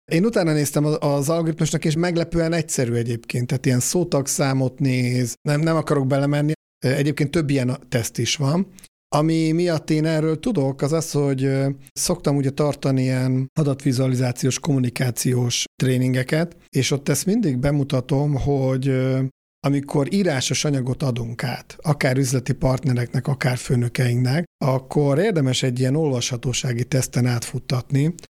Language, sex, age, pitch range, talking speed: Hungarian, male, 50-69, 130-150 Hz, 130 wpm